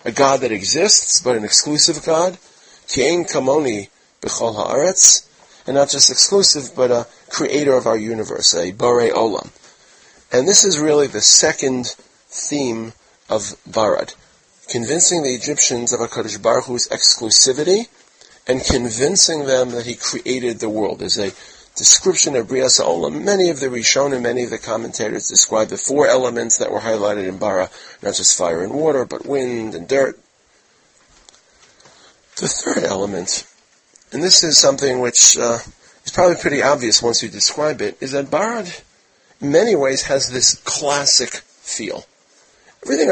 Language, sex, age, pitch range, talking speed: English, male, 40-59, 115-150 Hz, 150 wpm